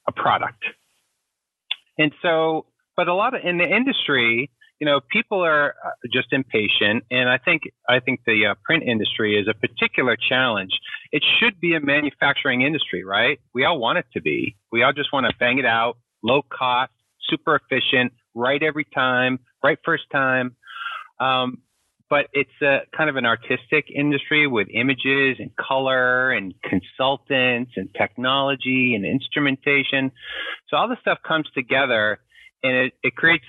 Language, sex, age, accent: English, male, 40-59, American